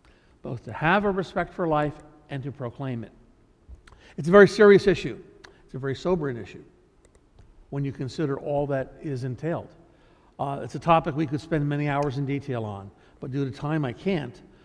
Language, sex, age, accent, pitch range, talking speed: English, male, 60-79, American, 135-180 Hz, 190 wpm